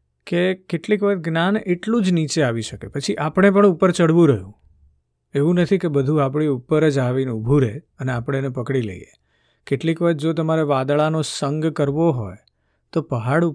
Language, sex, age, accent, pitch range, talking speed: Gujarati, male, 50-69, native, 115-160 Hz, 135 wpm